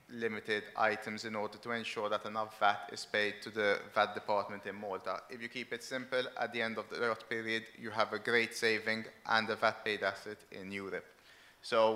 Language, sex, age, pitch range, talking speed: English, male, 30-49, 105-120 Hz, 210 wpm